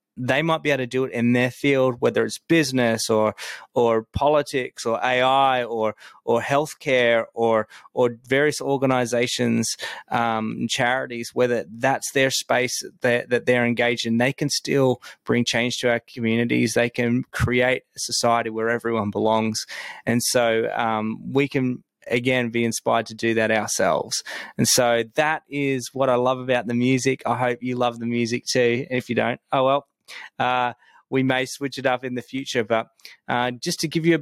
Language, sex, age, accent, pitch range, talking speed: English, male, 20-39, Australian, 115-135 Hz, 180 wpm